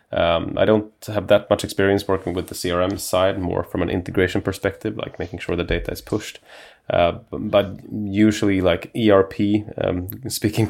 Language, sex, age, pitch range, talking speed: English, male, 30-49, 95-105 Hz, 175 wpm